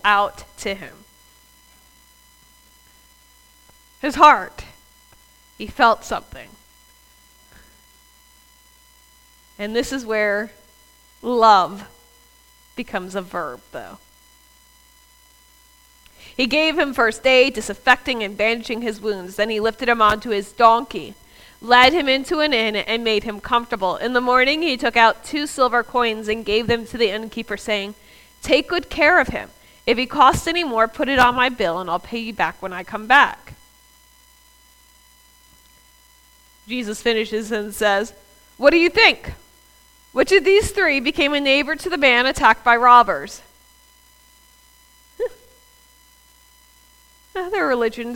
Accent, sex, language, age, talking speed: American, female, English, 20-39, 130 wpm